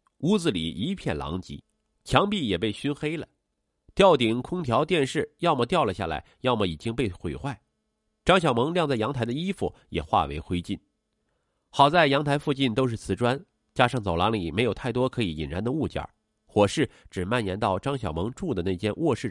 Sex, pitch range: male, 100-145 Hz